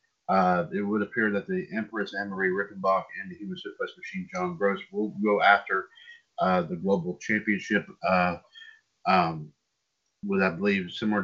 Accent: American